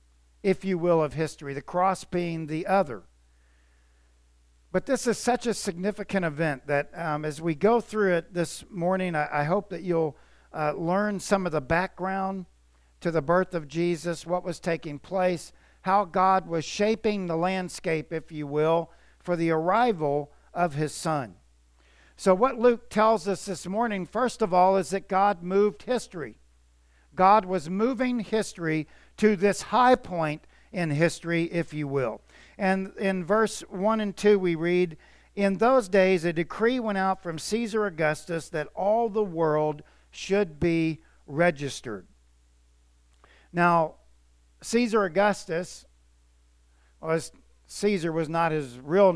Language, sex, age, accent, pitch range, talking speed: English, male, 50-69, American, 150-195 Hz, 150 wpm